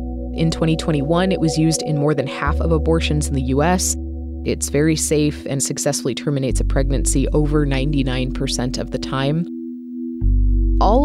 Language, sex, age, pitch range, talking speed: English, female, 20-39, 140-175 Hz, 155 wpm